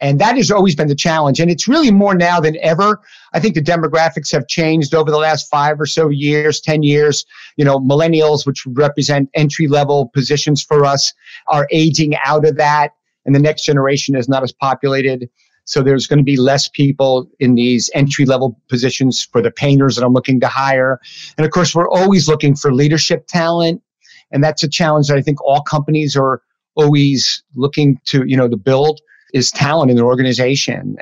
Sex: male